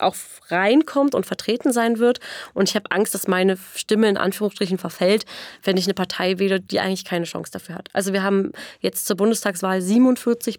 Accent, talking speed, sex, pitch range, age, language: German, 195 wpm, female, 185-220 Hz, 30-49, German